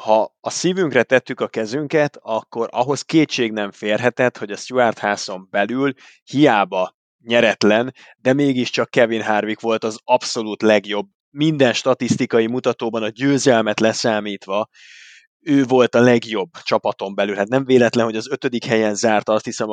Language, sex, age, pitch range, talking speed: Hungarian, male, 20-39, 110-130 Hz, 145 wpm